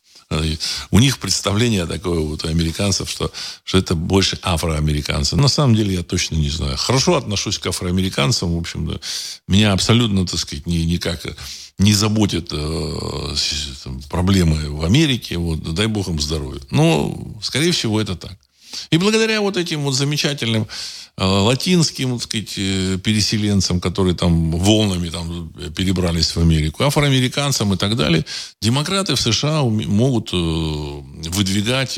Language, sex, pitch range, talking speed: Russian, male, 85-115 Hz, 140 wpm